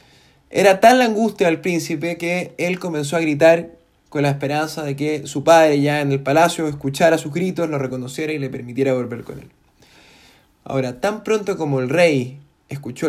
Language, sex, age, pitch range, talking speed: Spanish, male, 20-39, 140-185 Hz, 185 wpm